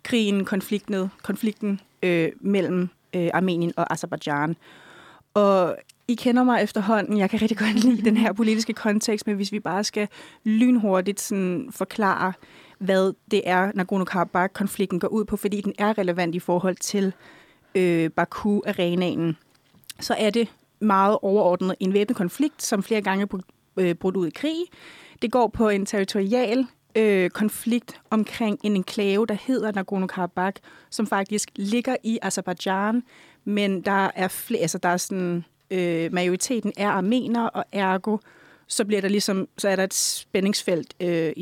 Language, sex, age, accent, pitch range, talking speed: Danish, female, 30-49, native, 185-220 Hz, 155 wpm